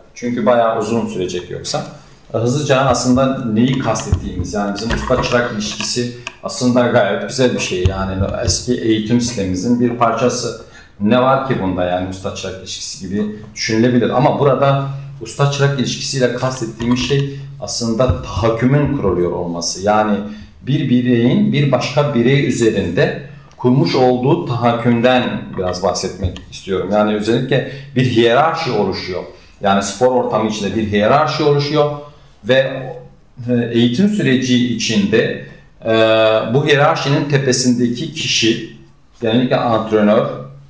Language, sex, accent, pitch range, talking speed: Turkish, male, native, 110-140 Hz, 115 wpm